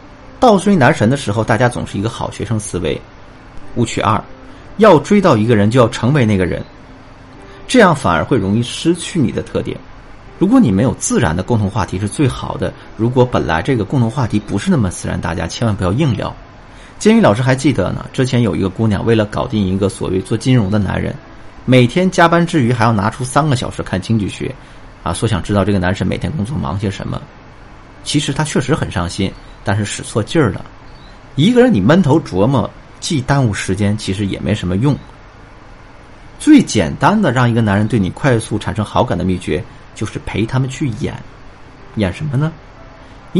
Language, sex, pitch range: Chinese, male, 100-130 Hz